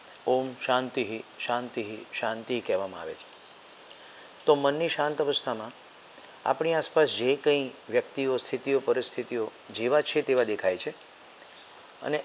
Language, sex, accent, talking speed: Gujarati, male, native, 120 wpm